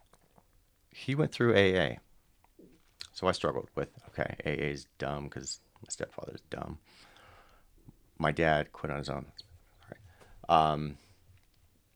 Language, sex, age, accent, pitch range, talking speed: English, male, 40-59, American, 75-95 Hz, 125 wpm